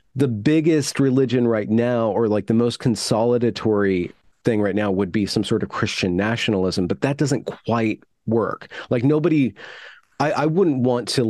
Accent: American